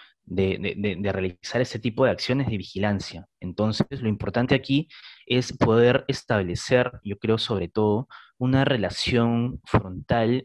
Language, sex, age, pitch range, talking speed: Spanish, male, 20-39, 100-125 Hz, 140 wpm